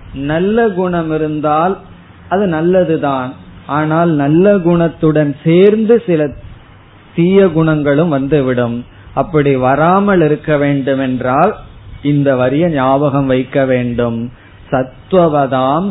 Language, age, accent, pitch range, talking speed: Tamil, 20-39, native, 125-155 Hz, 85 wpm